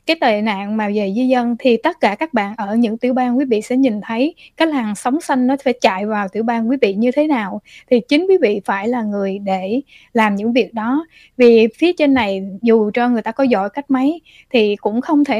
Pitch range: 215-265 Hz